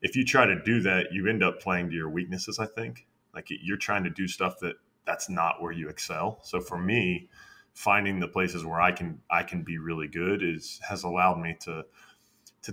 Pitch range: 85-95 Hz